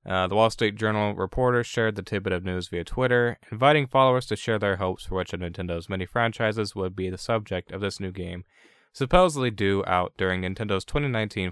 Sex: male